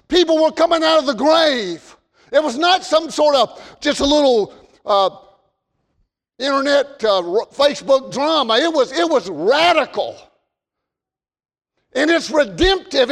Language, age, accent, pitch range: English, 50-69, American, 265-330 Hz